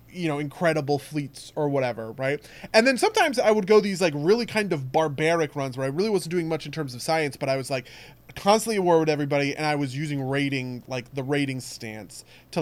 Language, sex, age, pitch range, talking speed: English, male, 20-39, 135-180 Hz, 235 wpm